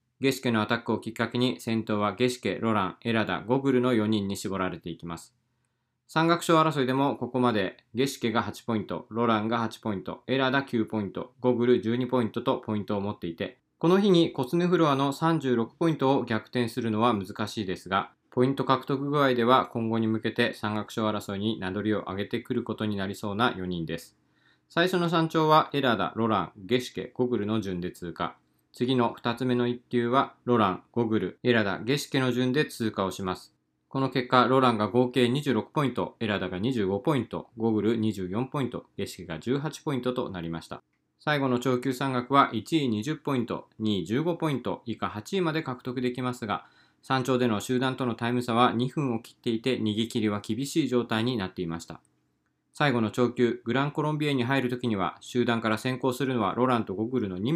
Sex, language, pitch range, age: male, Japanese, 105-130 Hz, 20-39